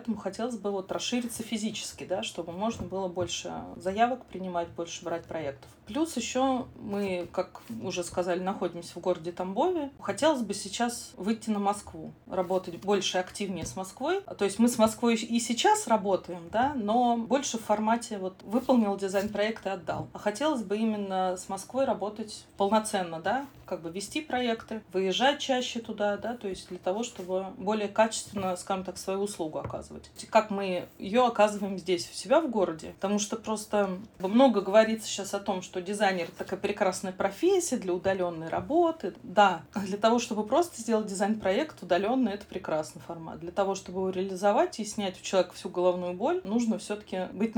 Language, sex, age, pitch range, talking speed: Russian, female, 30-49, 185-230 Hz, 165 wpm